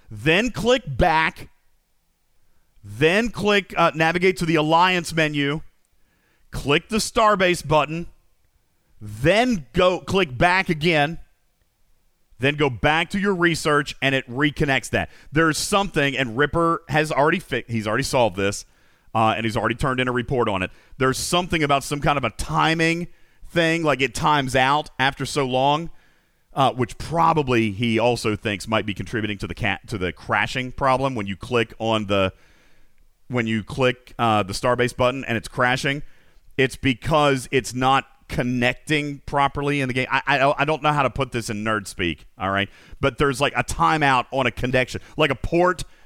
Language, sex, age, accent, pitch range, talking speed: English, male, 40-59, American, 115-160 Hz, 170 wpm